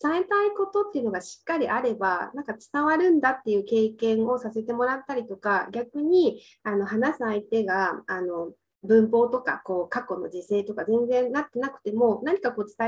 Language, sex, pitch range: Japanese, female, 200-275 Hz